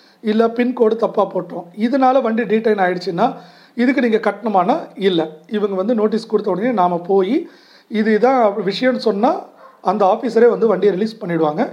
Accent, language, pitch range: native, Tamil, 190-245 Hz